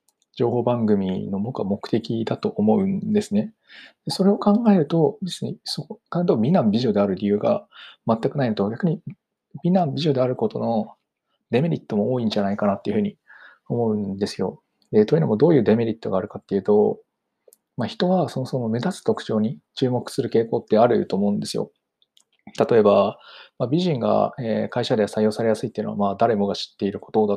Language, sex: Japanese, male